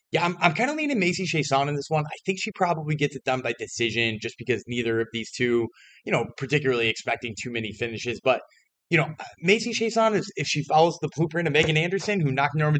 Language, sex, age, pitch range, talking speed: English, male, 30-49, 120-170 Hz, 225 wpm